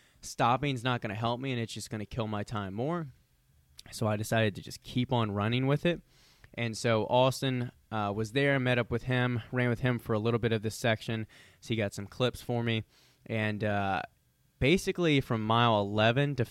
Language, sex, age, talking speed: English, male, 20-39, 220 wpm